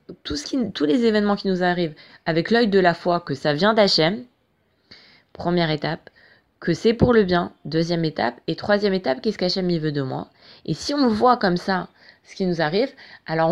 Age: 20-39